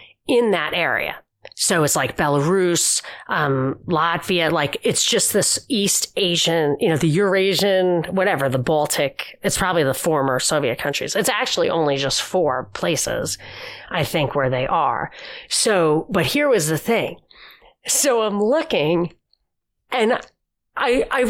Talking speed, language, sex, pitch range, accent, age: 145 wpm, English, female, 160-235 Hz, American, 30-49